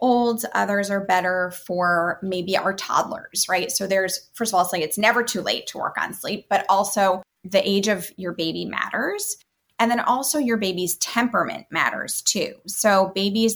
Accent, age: American, 20-39